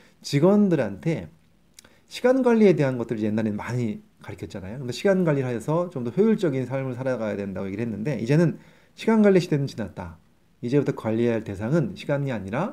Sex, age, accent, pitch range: male, 30-49, native, 110-170 Hz